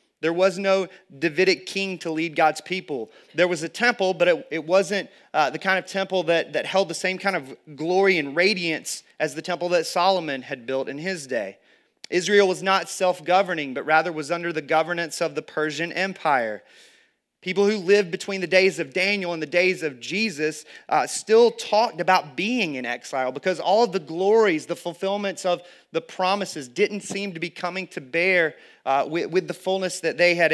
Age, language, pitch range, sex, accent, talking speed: 30-49, English, 150-185 Hz, male, American, 200 wpm